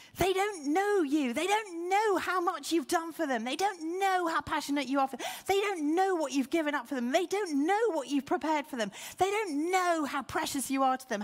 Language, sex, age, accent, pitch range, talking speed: English, female, 40-59, British, 180-295 Hz, 255 wpm